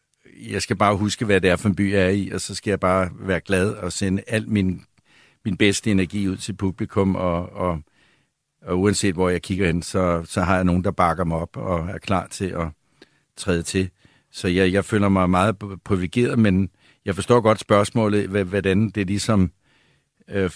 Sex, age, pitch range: male, 60-79, 95-110 Hz